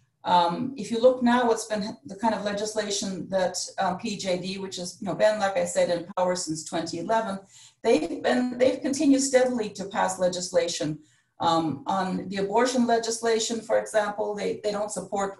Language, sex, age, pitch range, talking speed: English, female, 40-59, 170-220 Hz, 180 wpm